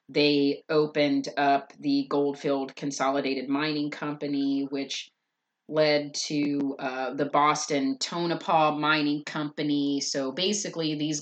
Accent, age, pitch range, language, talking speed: American, 30-49, 145-170 Hz, English, 105 wpm